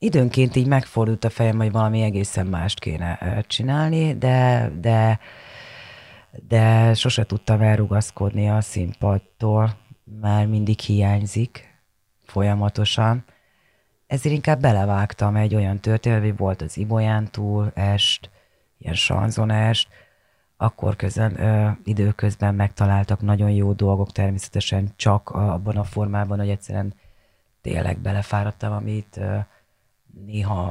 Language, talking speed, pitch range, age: Hungarian, 105 wpm, 100-115 Hz, 30-49